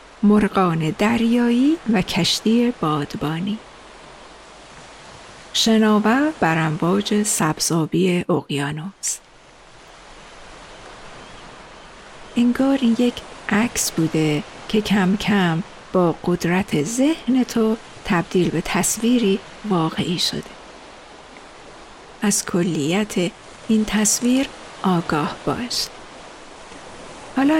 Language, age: Persian, 50-69